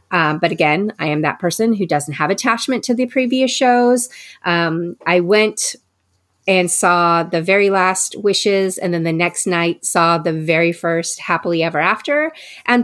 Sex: female